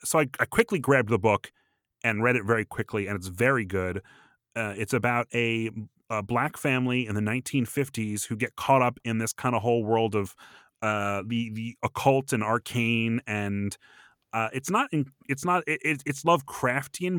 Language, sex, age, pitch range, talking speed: English, male, 30-49, 105-135 Hz, 185 wpm